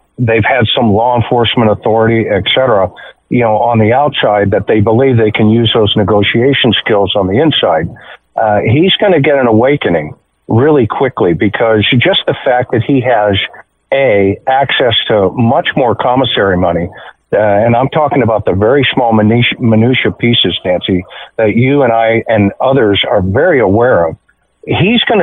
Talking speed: 170 wpm